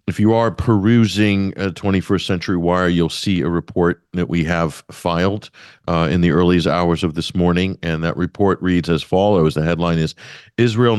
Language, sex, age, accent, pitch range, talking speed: English, male, 50-69, American, 85-100 Hz, 185 wpm